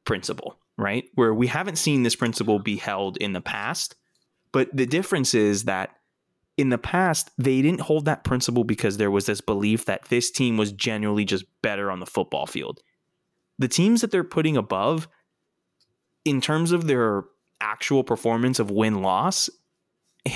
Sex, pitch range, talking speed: male, 105-140 Hz, 170 wpm